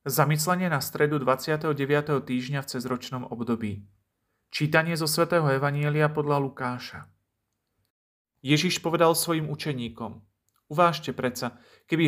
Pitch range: 125-155 Hz